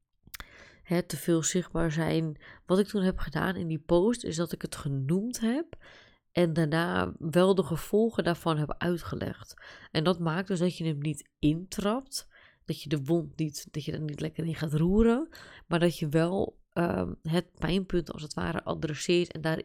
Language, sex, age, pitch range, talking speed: Dutch, female, 20-39, 155-185 Hz, 185 wpm